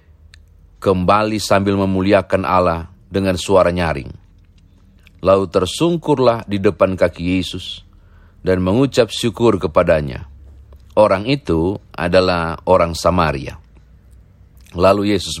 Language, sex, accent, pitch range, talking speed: Indonesian, male, native, 85-100 Hz, 95 wpm